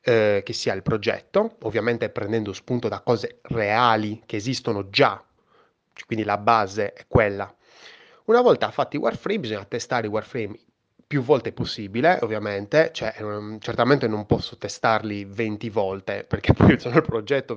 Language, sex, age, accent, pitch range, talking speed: Italian, male, 20-39, native, 105-125 Hz, 140 wpm